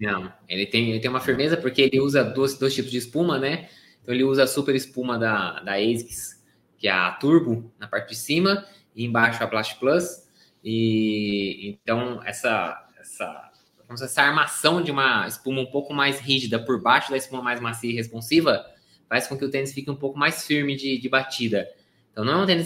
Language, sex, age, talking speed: Portuguese, male, 20-39, 200 wpm